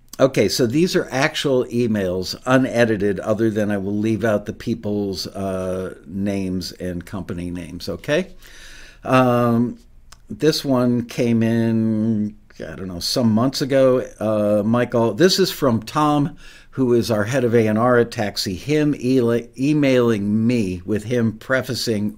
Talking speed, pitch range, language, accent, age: 140 wpm, 105-130 Hz, English, American, 60-79